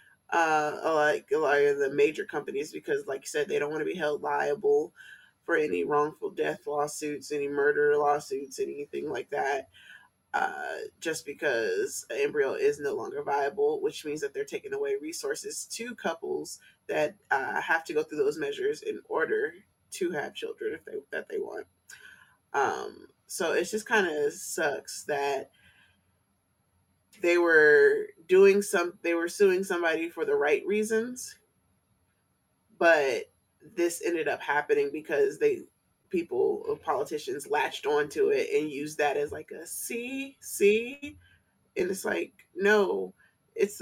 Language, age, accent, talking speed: English, 20-39, American, 150 wpm